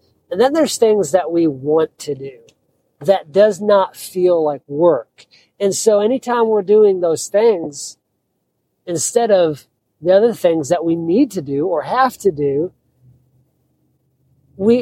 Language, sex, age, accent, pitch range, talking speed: English, male, 40-59, American, 145-215 Hz, 150 wpm